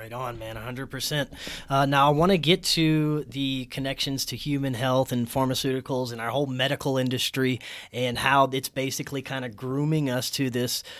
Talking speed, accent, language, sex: 180 wpm, American, English, male